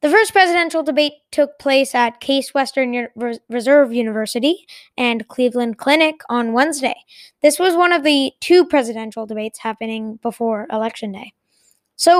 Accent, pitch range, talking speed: American, 230-305 Hz, 145 wpm